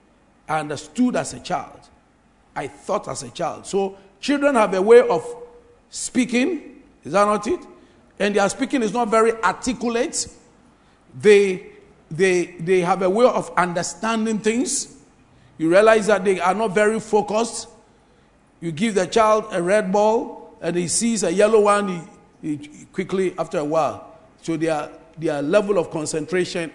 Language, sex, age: English, male, 50-69